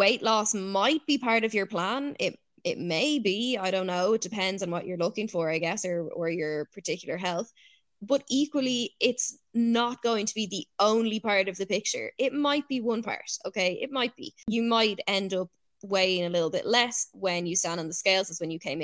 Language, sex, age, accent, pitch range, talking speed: English, female, 10-29, Irish, 180-230 Hz, 225 wpm